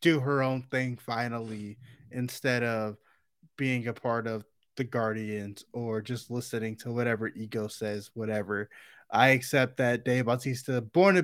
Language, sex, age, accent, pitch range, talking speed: English, male, 20-39, American, 115-145 Hz, 150 wpm